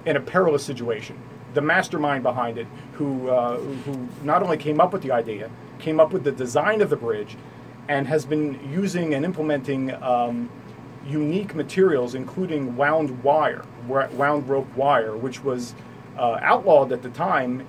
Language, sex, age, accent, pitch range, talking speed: English, male, 40-59, American, 125-155 Hz, 165 wpm